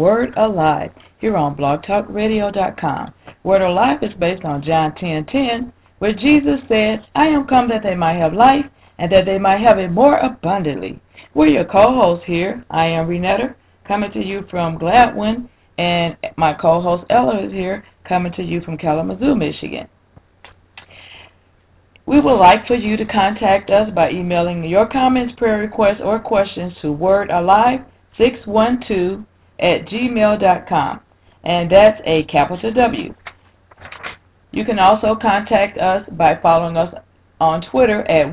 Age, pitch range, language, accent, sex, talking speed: 40-59, 160-220 Hz, English, American, female, 150 wpm